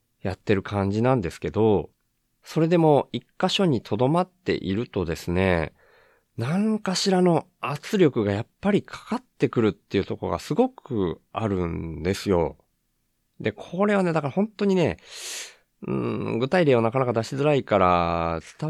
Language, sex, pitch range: Japanese, male, 100-145 Hz